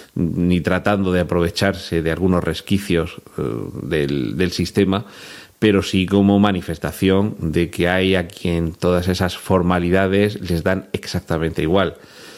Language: Spanish